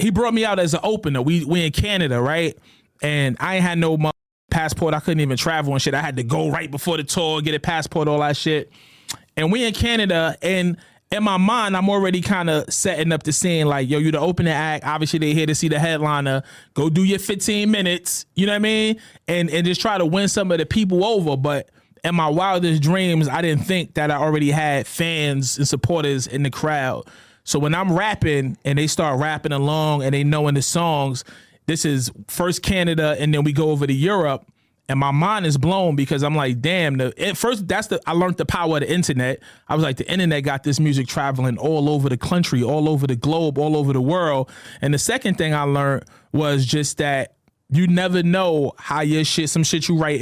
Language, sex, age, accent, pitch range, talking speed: English, male, 30-49, American, 145-175 Hz, 230 wpm